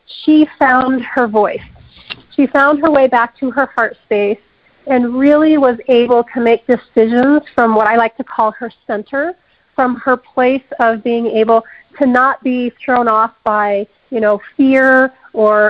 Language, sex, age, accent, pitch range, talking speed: English, female, 40-59, American, 220-275 Hz, 170 wpm